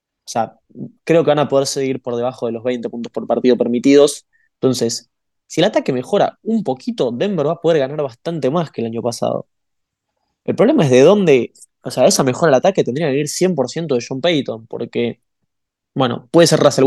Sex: male